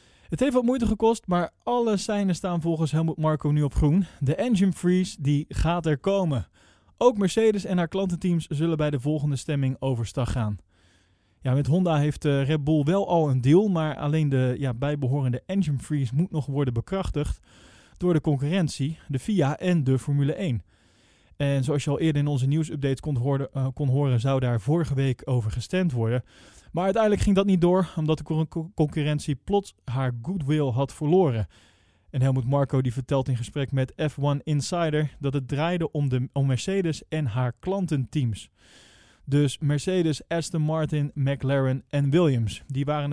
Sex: male